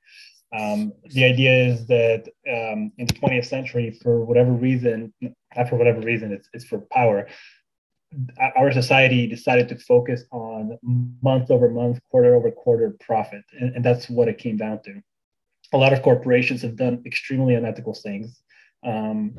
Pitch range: 115-135 Hz